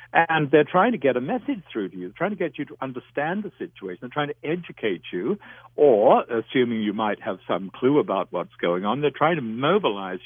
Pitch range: 100-140 Hz